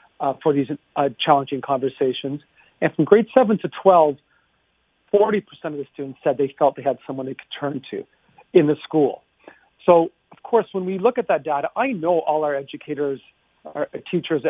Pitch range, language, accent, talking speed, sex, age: 145-175 Hz, English, American, 185 wpm, male, 40-59